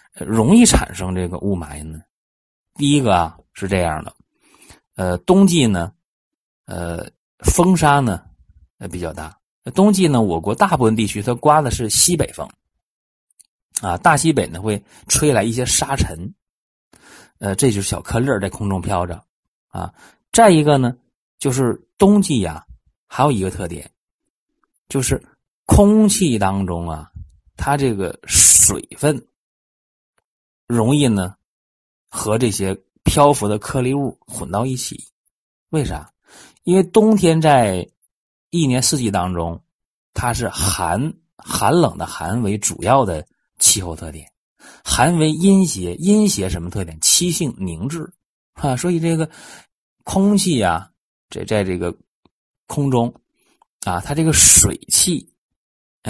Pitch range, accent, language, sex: 90-150 Hz, native, Chinese, male